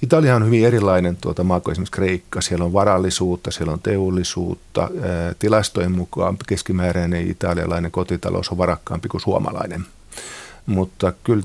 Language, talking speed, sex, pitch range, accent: Finnish, 135 wpm, male, 85-100 Hz, native